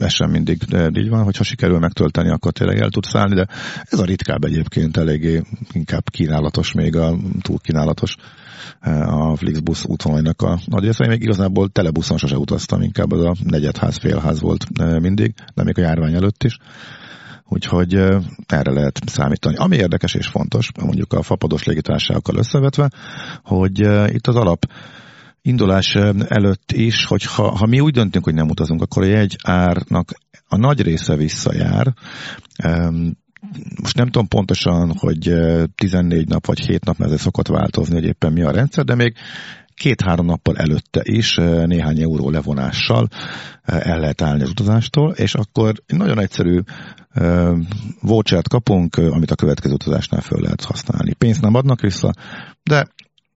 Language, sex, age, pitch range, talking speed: Hungarian, male, 50-69, 80-115 Hz, 155 wpm